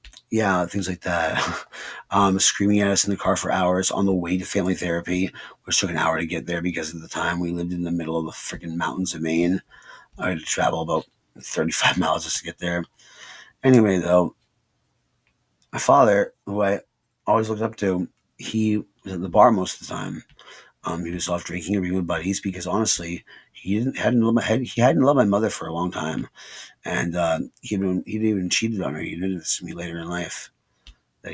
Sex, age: male, 30-49